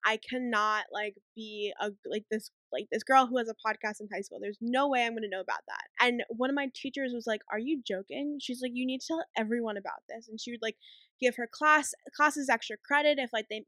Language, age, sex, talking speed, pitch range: English, 10-29, female, 255 wpm, 215-260 Hz